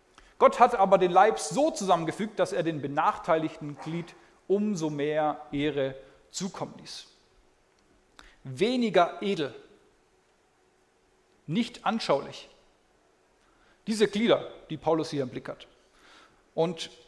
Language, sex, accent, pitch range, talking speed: German, male, German, 150-210 Hz, 105 wpm